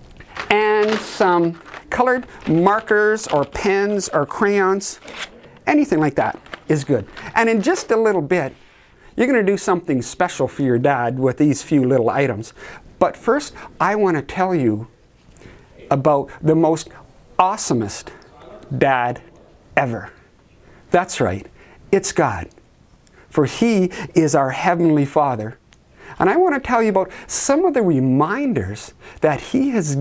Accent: American